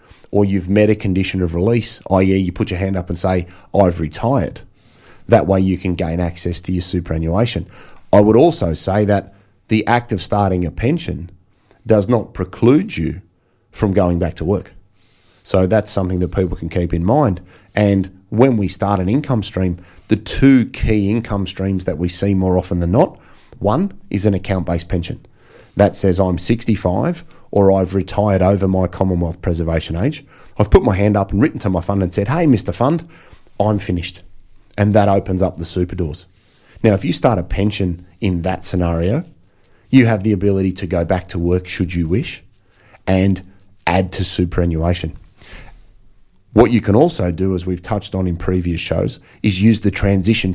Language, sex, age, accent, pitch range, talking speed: English, male, 30-49, Australian, 90-105 Hz, 185 wpm